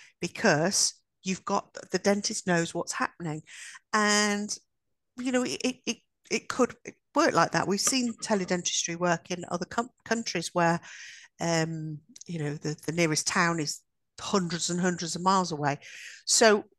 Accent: British